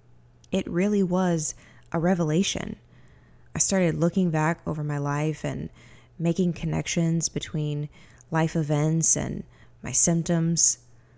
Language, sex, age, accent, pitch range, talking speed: English, female, 20-39, American, 120-180 Hz, 115 wpm